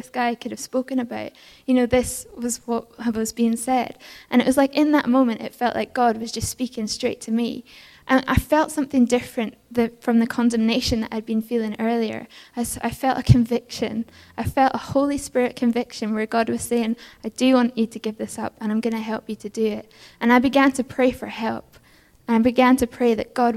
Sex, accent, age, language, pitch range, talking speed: female, British, 10-29, English, 230-255 Hz, 225 wpm